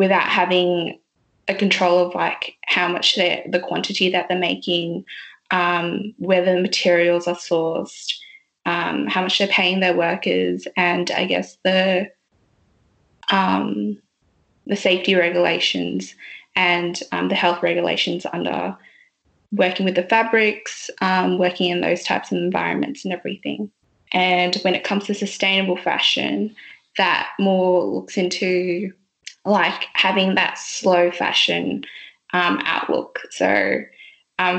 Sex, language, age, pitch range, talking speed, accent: female, English, 20-39, 175-195 Hz, 130 wpm, Australian